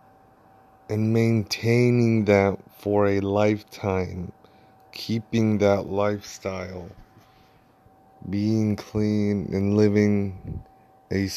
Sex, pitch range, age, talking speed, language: male, 100-115 Hz, 20-39, 75 wpm, English